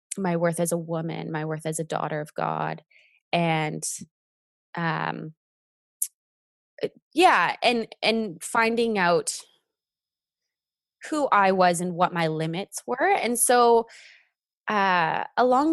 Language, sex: English, female